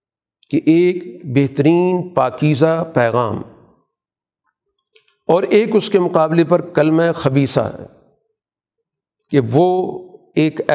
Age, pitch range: 50-69, 145-200 Hz